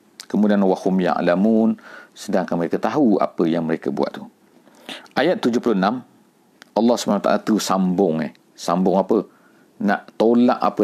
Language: English